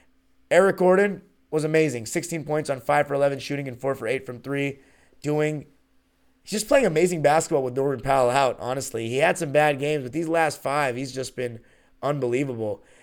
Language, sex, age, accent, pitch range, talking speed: English, male, 30-49, American, 125-175 Hz, 185 wpm